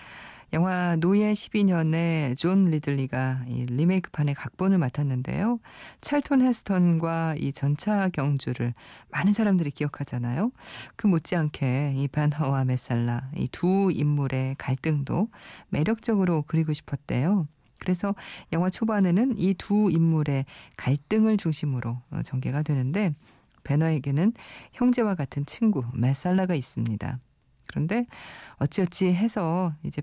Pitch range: 135-180 Hz